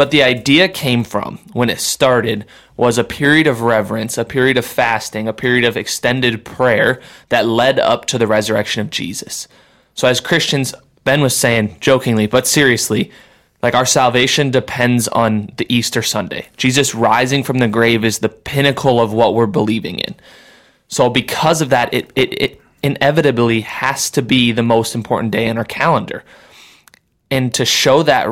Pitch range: 115-130 Hz